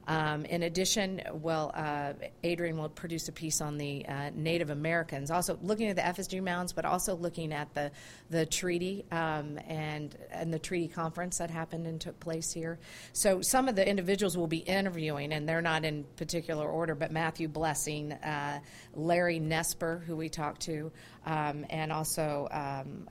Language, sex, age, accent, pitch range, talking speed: English, female, 40-59, American, 150-175 Hz, 175 wpm